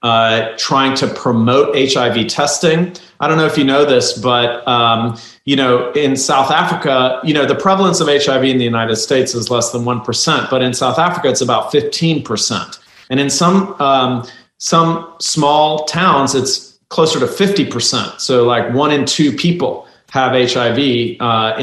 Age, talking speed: 40-59, 165 wpm